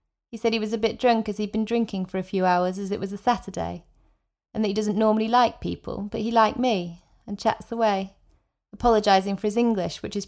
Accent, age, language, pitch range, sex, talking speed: British, 30-49, English, 190-225 Hz, female, 235 wpm